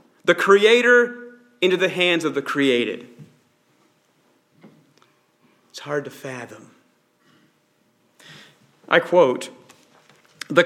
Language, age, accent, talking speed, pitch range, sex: English, 40-59, American, 85 wpm, 175-260 Hz, male